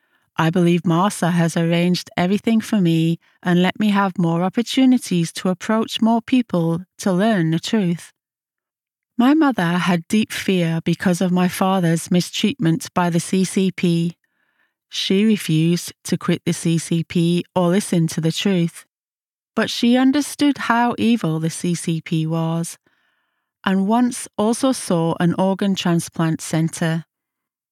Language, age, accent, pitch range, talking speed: English, 30-49, British, 170-220 Hz, 135 wpm